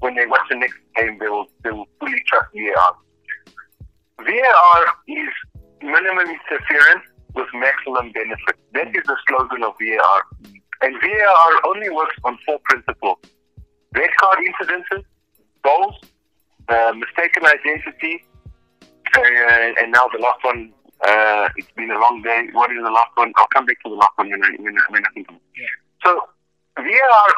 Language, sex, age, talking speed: English, male, 50-69, 150 wpm